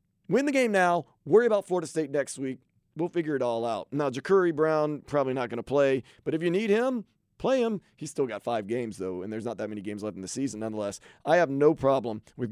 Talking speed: 250 wpm